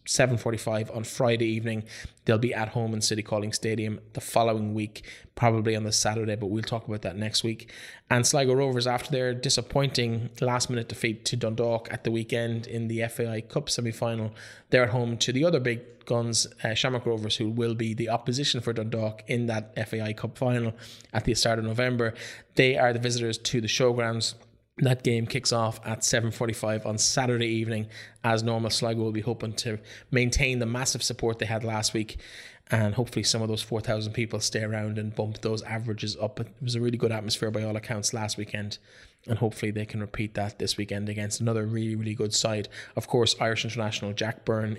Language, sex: English, male